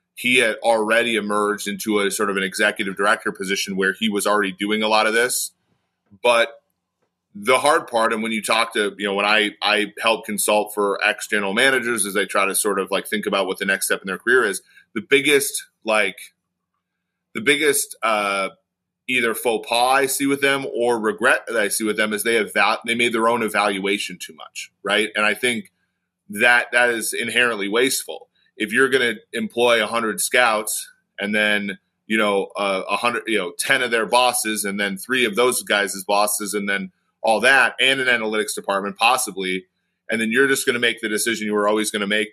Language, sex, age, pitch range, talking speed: English, male, 30-49, 105-120 Hz, 215 wpm